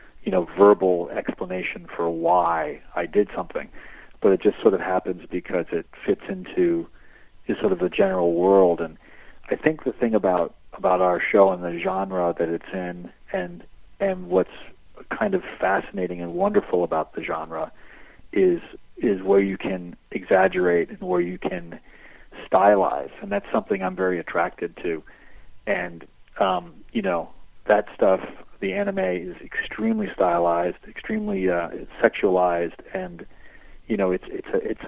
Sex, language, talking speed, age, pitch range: male, English, 155 wpm, 40-59, 90-105 Hz